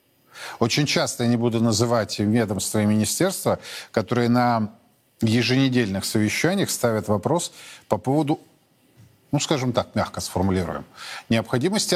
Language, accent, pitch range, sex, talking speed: Russian, native, 115-155 Hz, male, 115 wpm